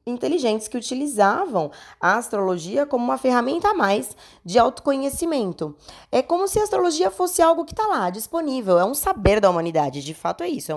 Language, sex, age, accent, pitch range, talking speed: Portuguese, female, 20-39, Brazilian, 160-235 Hz, 185 wpm